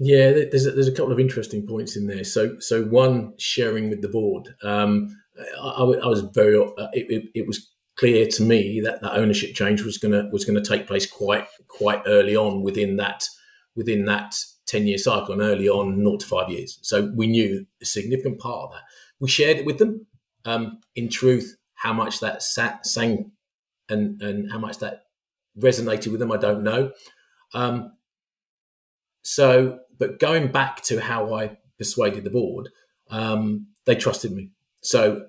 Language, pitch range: English, 105-125 Hz